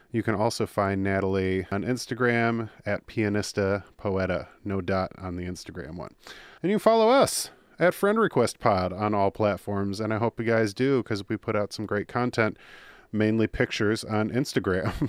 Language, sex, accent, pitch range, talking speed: English, male, American, 100-125 Hz, 175 wpm